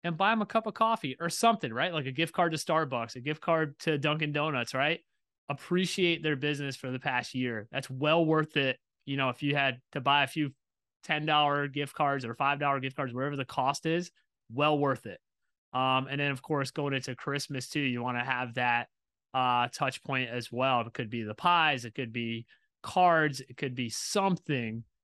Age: 30-49